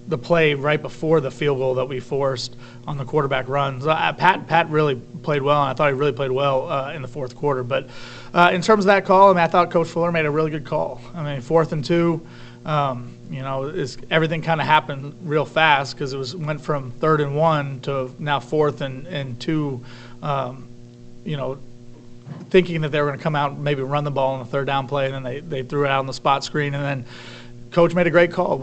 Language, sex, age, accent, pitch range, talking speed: English, male, 30-49, American, 135-155 Hz, 245 wpm